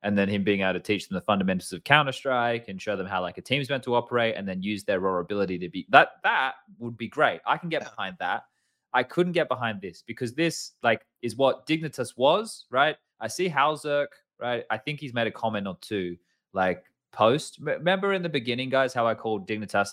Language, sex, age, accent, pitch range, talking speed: English, male, 20-39, Australian, 115-165 Hz, 235 wpm